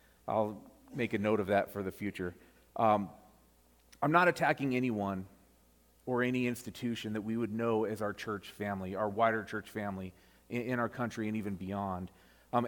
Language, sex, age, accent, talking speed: English, male, 40-59, American, 175 wpm